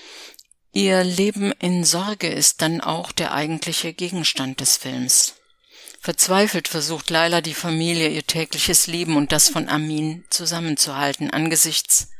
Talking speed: 130 wpm